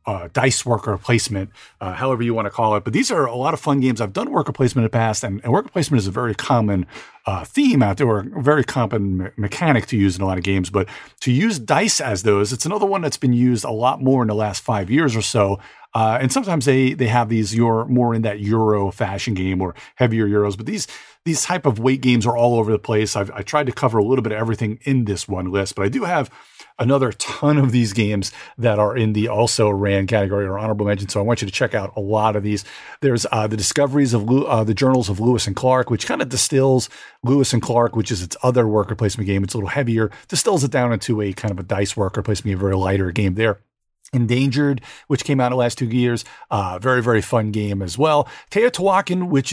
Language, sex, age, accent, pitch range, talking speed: English, male, 40-59, American, 105-130 Hz, 255 wpm